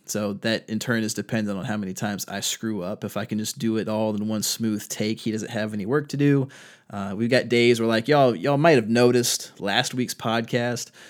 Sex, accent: male, American